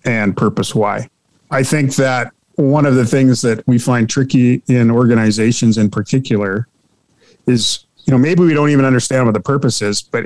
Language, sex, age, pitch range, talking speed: English, male, 40-59, 110-135 Hz, 180 wpm